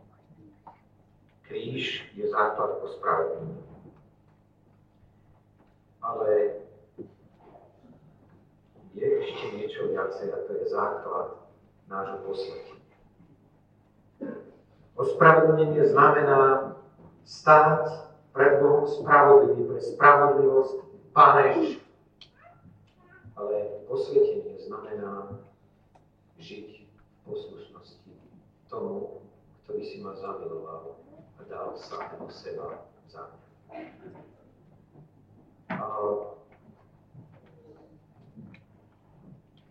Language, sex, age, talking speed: Slovak, male, 50-69, 65 wpm